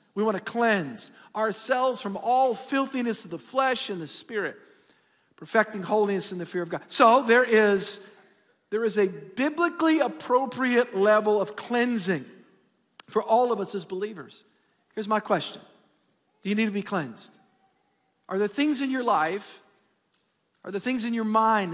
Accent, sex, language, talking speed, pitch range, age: American, male, English, 160 wpm, 200-240 Hz, 50-69